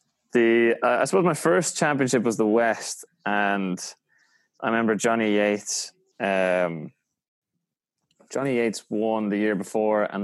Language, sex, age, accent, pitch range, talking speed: English, male, 20-39, Irish, 100-115 Hz, 135 wpm